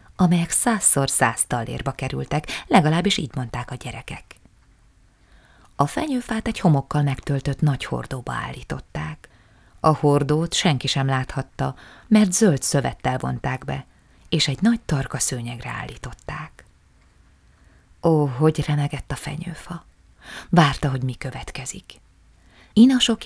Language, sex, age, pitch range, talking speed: Hungarian, female, 20-39, 130-170 Hz, 115 wpm